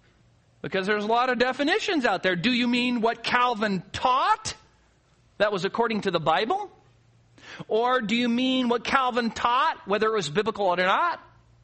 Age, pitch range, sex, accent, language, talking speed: 50-69, 170-255 Hz, male, American, English, 170 wpm